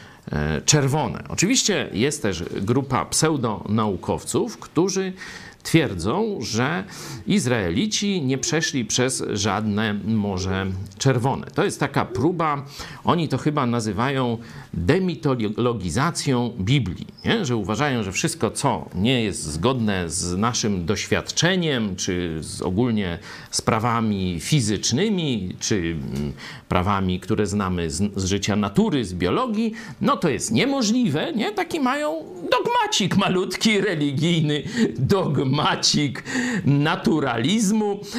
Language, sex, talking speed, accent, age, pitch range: Polish, male, 100 wpm, native, 50-69, 105-165 Hz